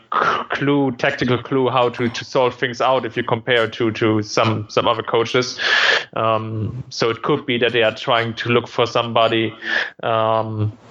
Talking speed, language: 175 wpm, English